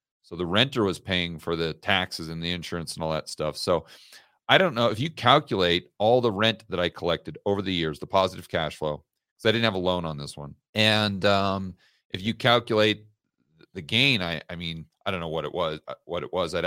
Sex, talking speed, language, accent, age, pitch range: male, 230 wpm, English, American, 40-59, 90-115 Hz